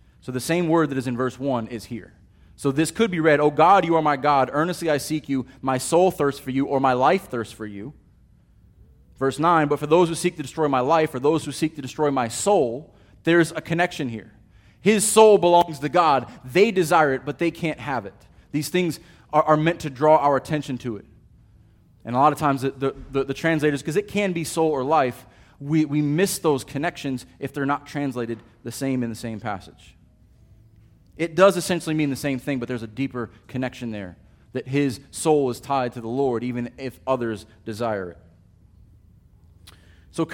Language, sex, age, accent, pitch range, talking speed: English, male, 30-49, American, 110-155 Hz, 215 wpm